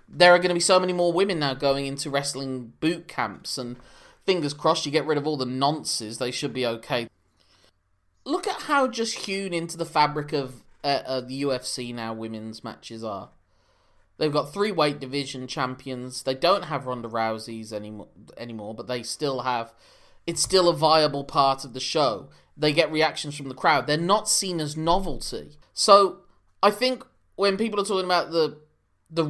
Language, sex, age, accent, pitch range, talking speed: English, male, 20-39, British, 120-170 Hz, 185 wpm